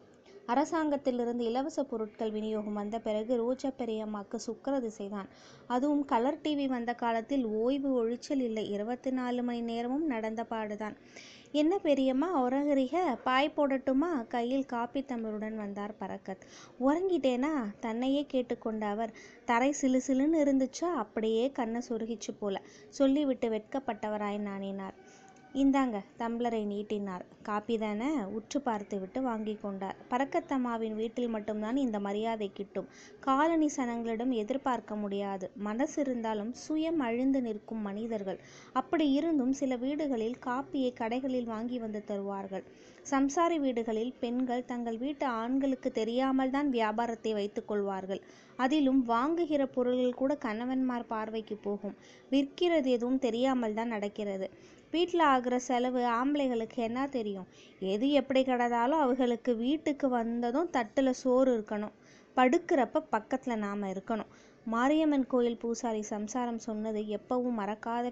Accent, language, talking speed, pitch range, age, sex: native, Tamil, 110 wpm, 220-270 Hz, 20-39, female